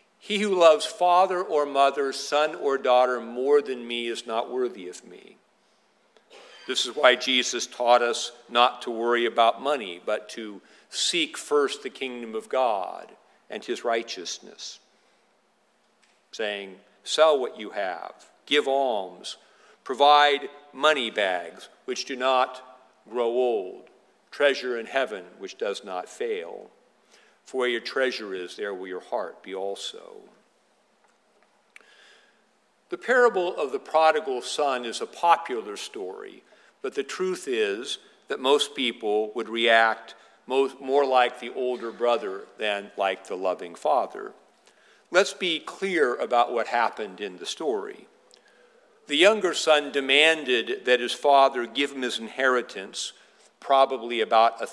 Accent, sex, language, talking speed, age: American, male, English, 135 wpm, 50-69